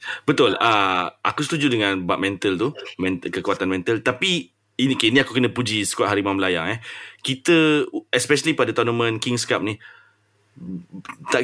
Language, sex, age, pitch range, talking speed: Malay, male, 30-49, 100-135 Hz, 150 wpm